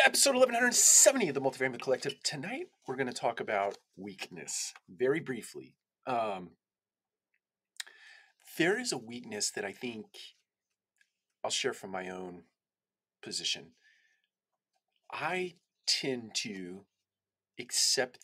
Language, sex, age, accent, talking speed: English, male, 40-59, American, 110 wpm